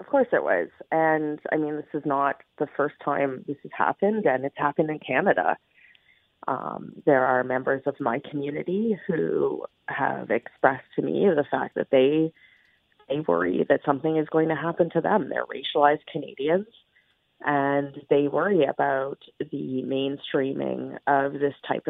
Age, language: 30-49, English